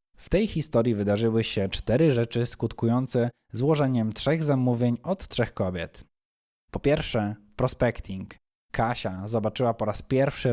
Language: Polish